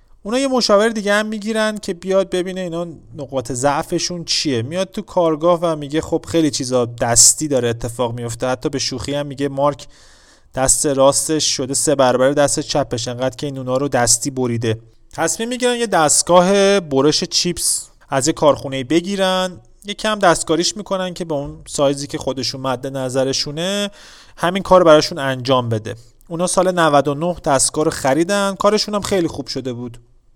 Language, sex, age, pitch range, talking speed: Persian, male, 30-49, 130-180 Hz, 160 wpm